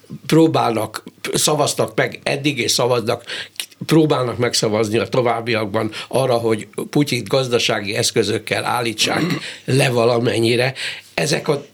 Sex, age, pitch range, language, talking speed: male, 60-79, 120-155 Hz, Hungarian, 95 wpm